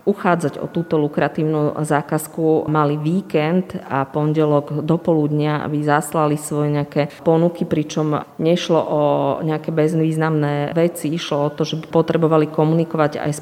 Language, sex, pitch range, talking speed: Slovak, female, 150-165 Hz, 135 wpm